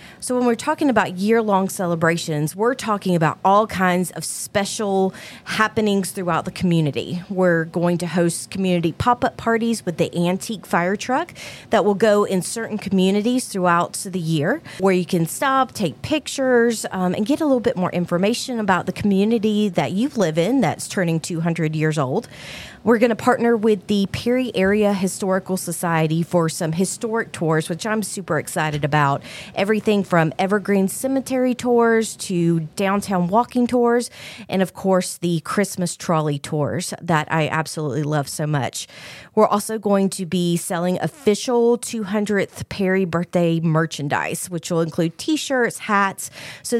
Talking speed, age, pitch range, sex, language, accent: 160 wpm, 30-49, 170-220 Hz, female, English, American